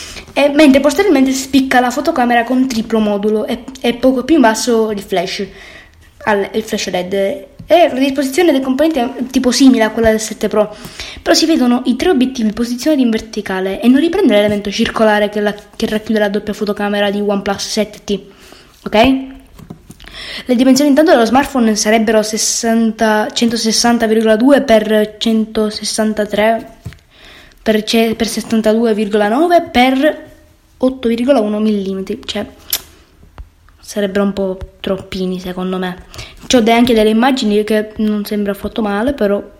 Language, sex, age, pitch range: Italian, female, 20-39, 210-255 Hz